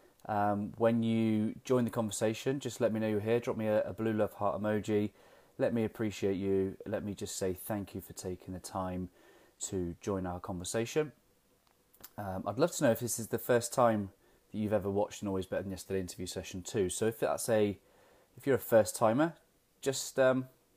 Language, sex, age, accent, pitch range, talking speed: English, male, 20-39, British, 95-115 Hz, 210 wpm